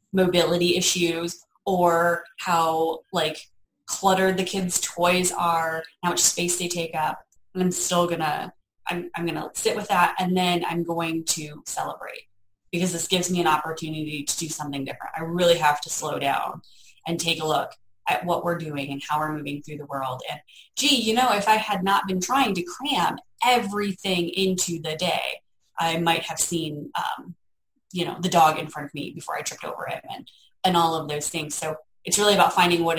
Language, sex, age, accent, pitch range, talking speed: English, female, 20-39, American, 160-200 Hz, 200 wpm